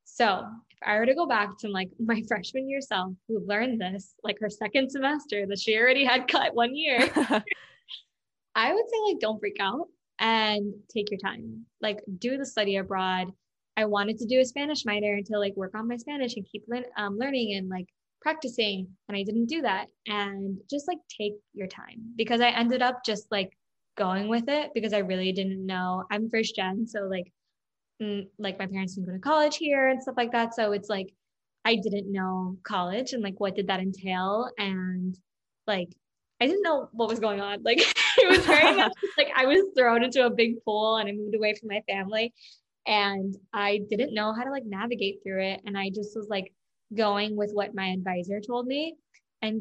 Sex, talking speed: female, 205 wpm